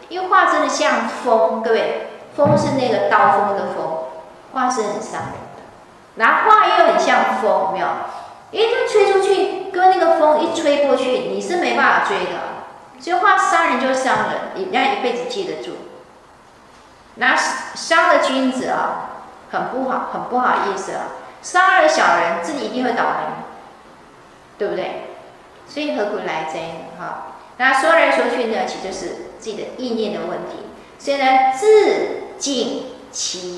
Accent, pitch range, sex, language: native, 210-340 Hz, female, Chinese